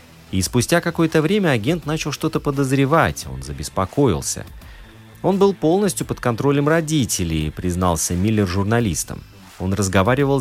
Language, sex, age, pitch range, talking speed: Russian, male, 30-49, 90-130 Hz, 120 wpm